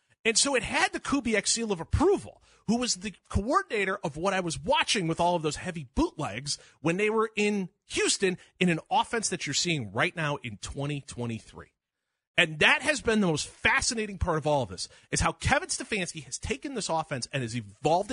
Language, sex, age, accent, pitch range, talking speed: English, male, 30-49, American, 120-190 Hz, 205 wpm